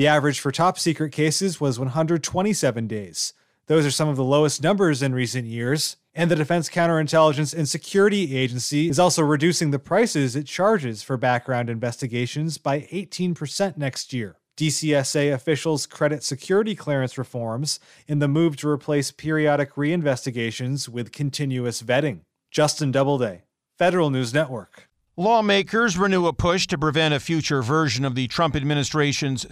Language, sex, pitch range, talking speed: English, male, 135-165 Hz, 150 wpm